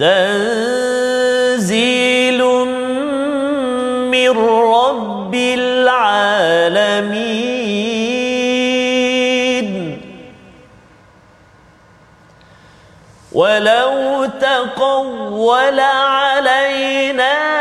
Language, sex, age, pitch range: Malayalam, male, 40-59, 235-300 Hz